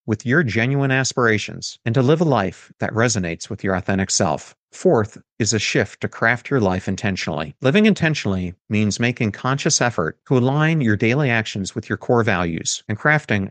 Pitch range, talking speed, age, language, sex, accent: 100-135 Hz, 180 wpm, 50-69, English, male, American